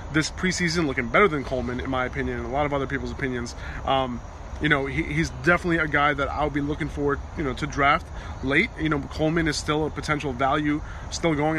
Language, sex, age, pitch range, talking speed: English, male, 20-39, 130-160 Hz, 230 wpm